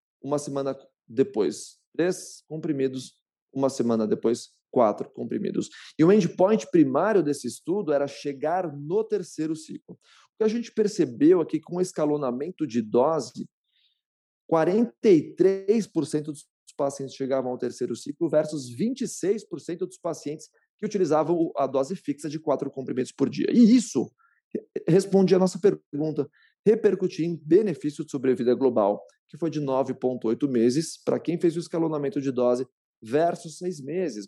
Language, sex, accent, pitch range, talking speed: English, male, Brazilian, 130-175 Hz, 140 wpm